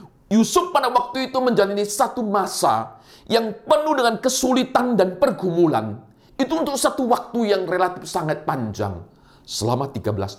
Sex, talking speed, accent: male, 135 wpm, native